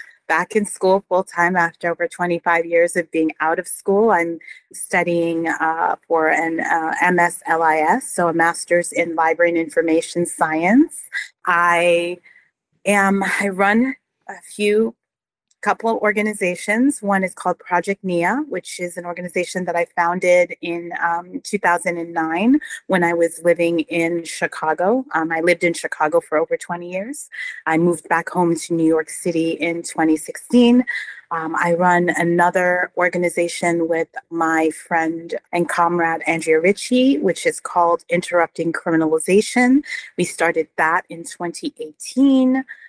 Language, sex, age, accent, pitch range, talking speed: English, female, 30-49, American, 165-200 Hz, 140 wpm